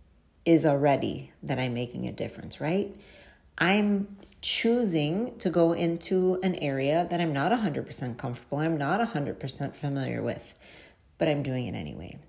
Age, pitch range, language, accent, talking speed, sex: 40-59, 140-195 Hz, English, American, 145 wpm, female